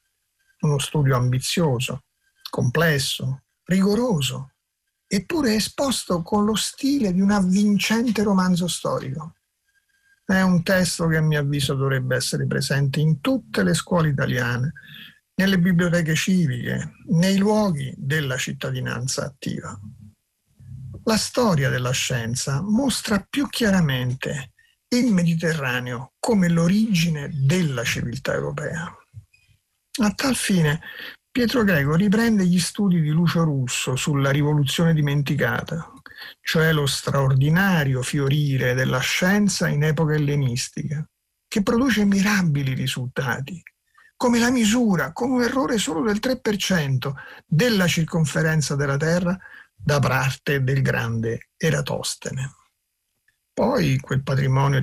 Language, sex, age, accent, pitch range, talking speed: Italian, male, 50-69, native, 135-200 Hz, 110 wpm